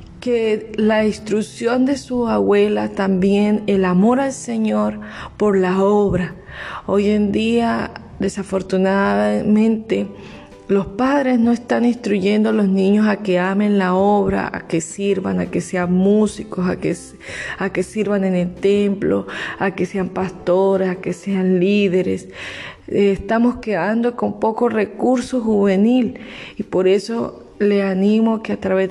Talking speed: 140 wpm